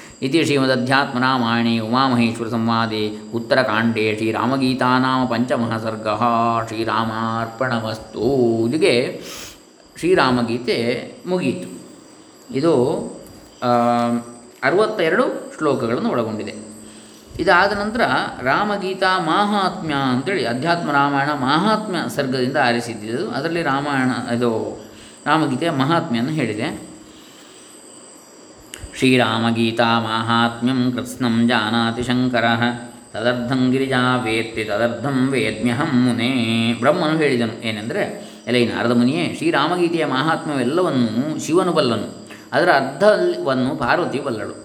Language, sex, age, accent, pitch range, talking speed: Kannada, male, 20-39, native, 115-130 Hz, 75 wpm